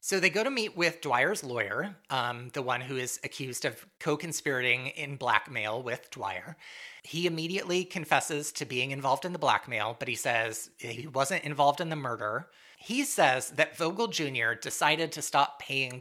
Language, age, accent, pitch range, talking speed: English, 30-49, American, 125-165 Hz, 180 wpm